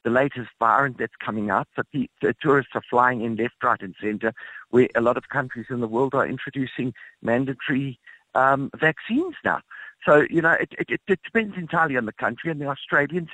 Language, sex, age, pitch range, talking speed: English, male, 50-69, 115-155 Hz, 205 wpm